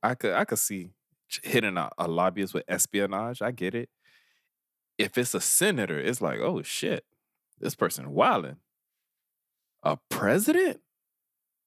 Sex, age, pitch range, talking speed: male, 20-39, 105-160 Hz, 140 wpm